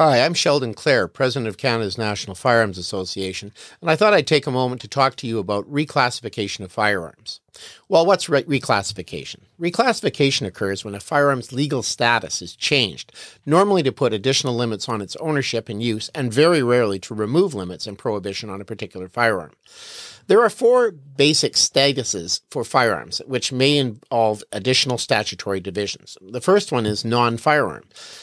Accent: American